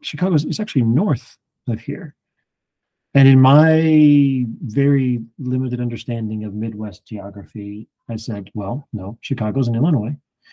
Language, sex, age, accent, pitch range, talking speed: English, male, 40-59, American, 105-130 Hz, 125 wpm